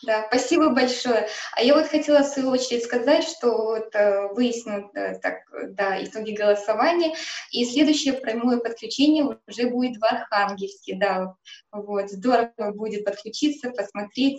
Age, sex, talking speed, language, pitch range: 20-39, female, 140 wpm, Russian, 205-245 Hz